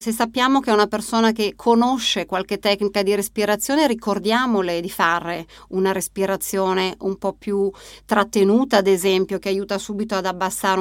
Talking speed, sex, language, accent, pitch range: 155 wpm, female, Italian, native, 185-215 Hz